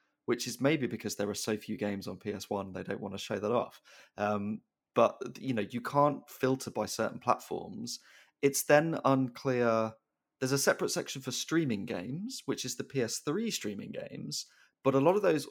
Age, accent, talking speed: 20-39, British, 190 wpm